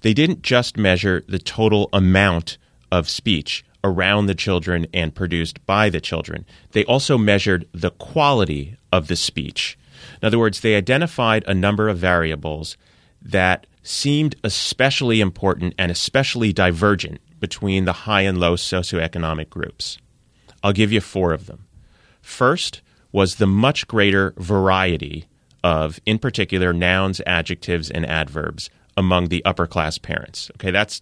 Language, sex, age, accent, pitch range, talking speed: English, male, 30-49, American, 85-110 Hz, 145 wpm